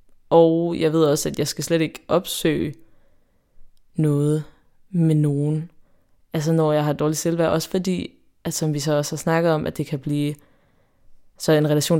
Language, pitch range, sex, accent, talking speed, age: Danish, 145-160 Hz, female, native, 180 wpm, 20-39